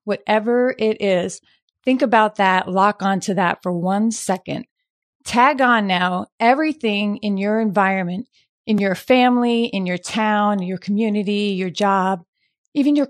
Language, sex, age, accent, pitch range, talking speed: English, female, 30-49, American, 195-235 Hz, 140 wpm